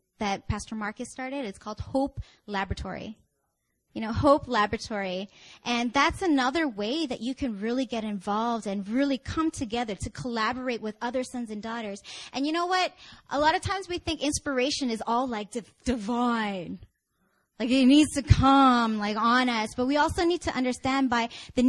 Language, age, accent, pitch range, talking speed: English, 20-39, American, 215-280 Hz, 175 wpm